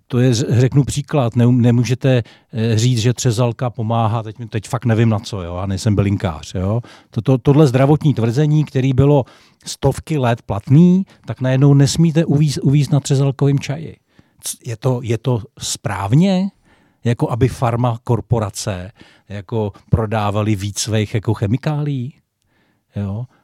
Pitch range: 110-140 Hz